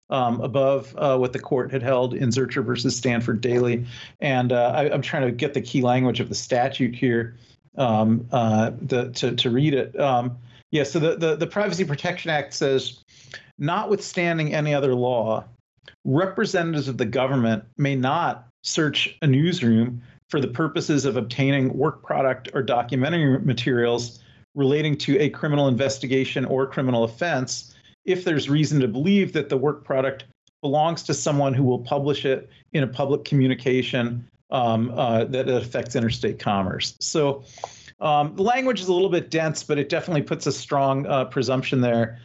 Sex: male